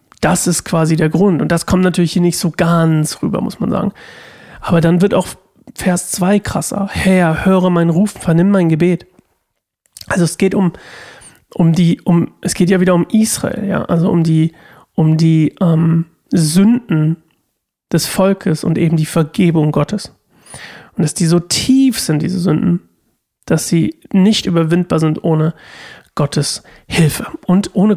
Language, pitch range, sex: German, 160-190 Hz, male